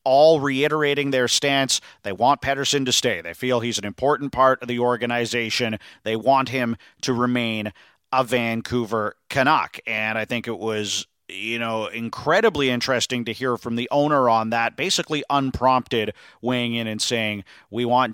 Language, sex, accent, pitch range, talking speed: English, male, American, 115-140 Hz, 165 wpm